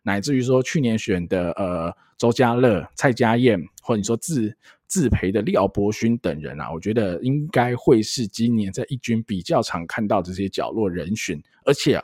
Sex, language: male, Chinese